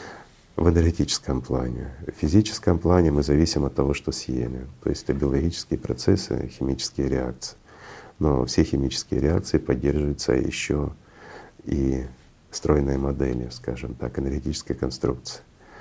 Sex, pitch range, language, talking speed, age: male, 65-85 Hz, Russian, 120 wpm, 50-69